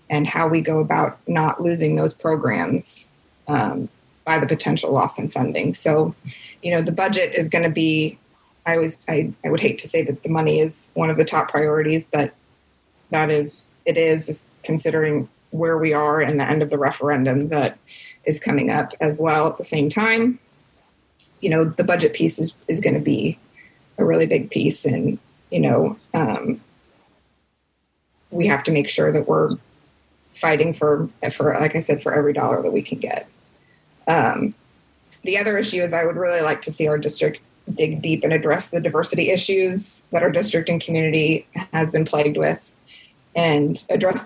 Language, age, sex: English, 20-39, female